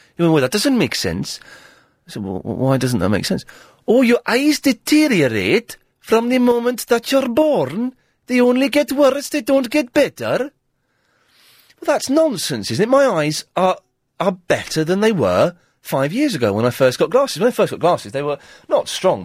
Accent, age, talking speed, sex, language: British, 30-49, 195 wpm, male, English